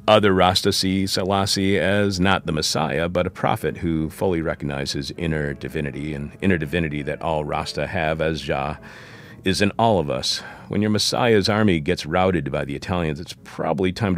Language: English